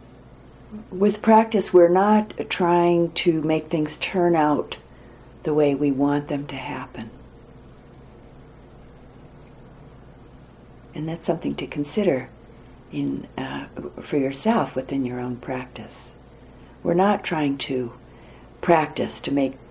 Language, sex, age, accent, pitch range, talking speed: English, female, 60-79, American, 125-170 Hz, 115 wpm